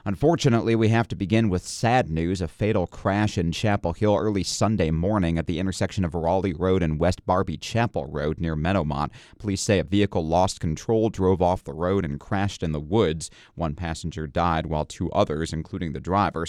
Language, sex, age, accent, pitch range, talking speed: English, male, 30-49, American, 80-110 Hz, 195 wpm